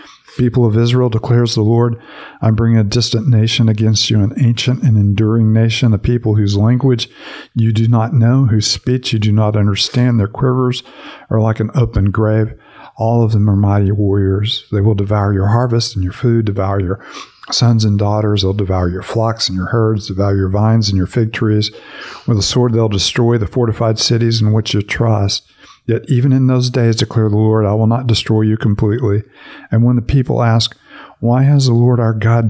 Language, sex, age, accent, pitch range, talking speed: English, male, 50-69, American, 105-120 Hz, 200 wpm